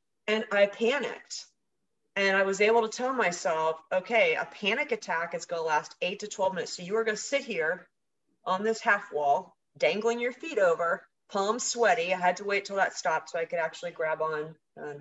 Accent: American